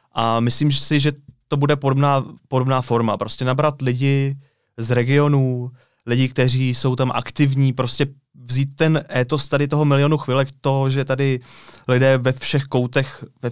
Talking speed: 155 wpm